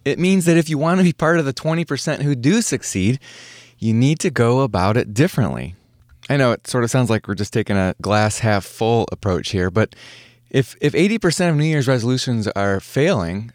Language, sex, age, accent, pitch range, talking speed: English, male, 20-39, American, 105-130 Hz, 215 wpm